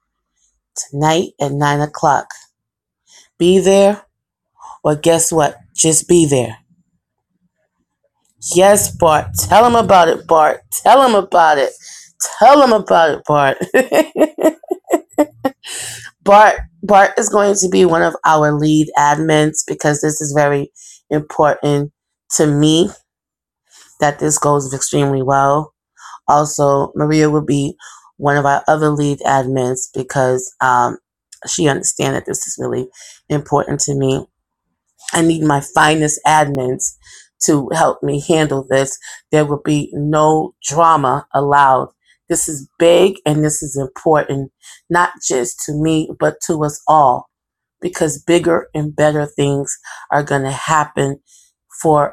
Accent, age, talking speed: American, 20-39, 130 wpm